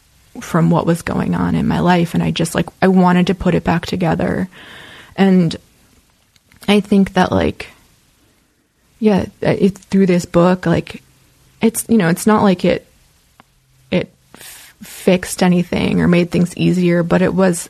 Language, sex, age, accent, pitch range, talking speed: English, female, 20-39, American, 175-200 Hz, 160 wpm